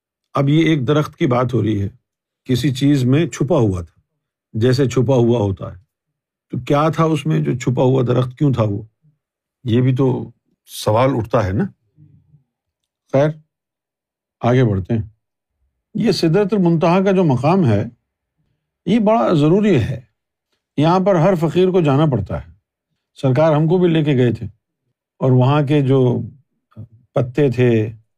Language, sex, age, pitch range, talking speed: Urdu, male, 50-69, 115-160 Hz, 160 wpm